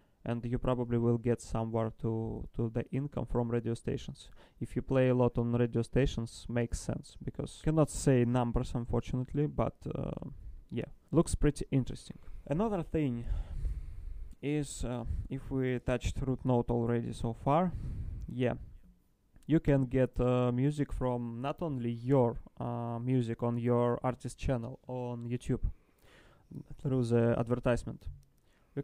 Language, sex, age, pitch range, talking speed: English, male, 20-39, 115-130 Hz, 145 wpm